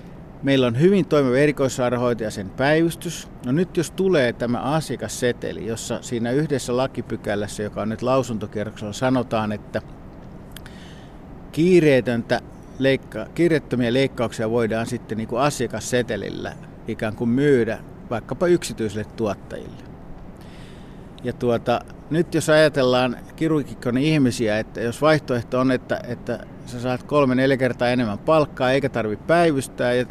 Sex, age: male, 50-69